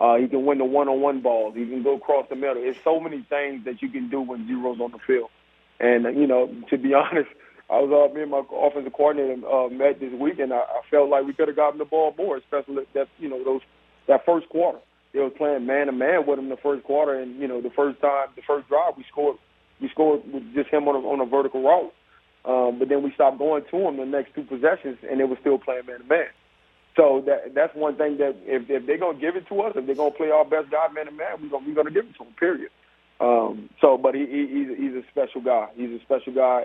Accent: American